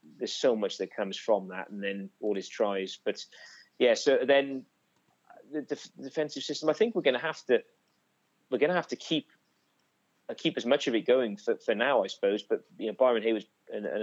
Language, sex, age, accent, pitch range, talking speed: English, male, 30-49, British, 105-120 Hz, 220 wpm